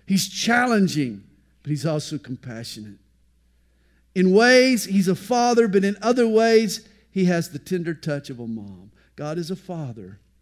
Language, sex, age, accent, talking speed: English, male, 50-69, American, 155 wpm